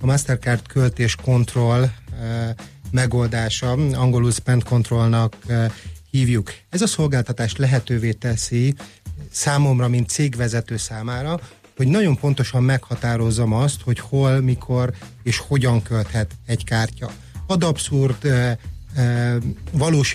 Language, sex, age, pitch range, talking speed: Hungarian, male, 30-49, 115-130 Hz, 105 wpm